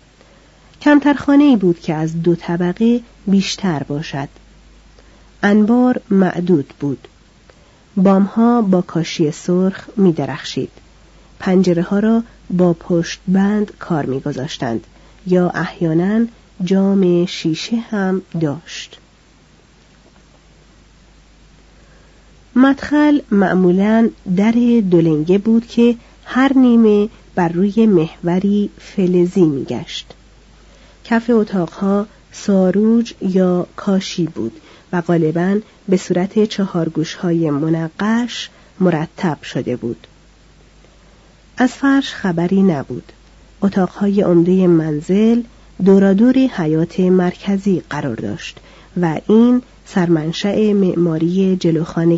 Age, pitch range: 40-59, 170-210 Hz